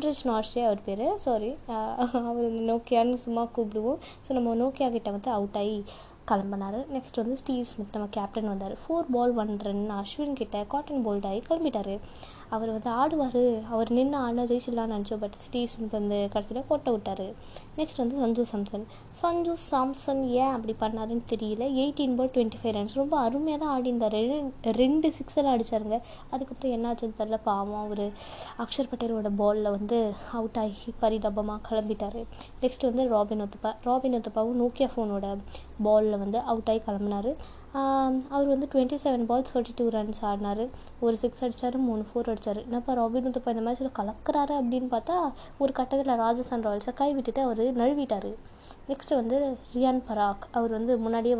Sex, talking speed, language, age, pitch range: female, 160 wpm, Tamil, 20-39, 220-270 Hz